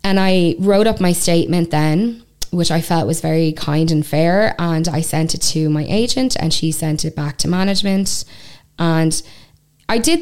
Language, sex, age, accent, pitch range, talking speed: English, female, 10-29, Irish, 155-175 Hz, 190 wpm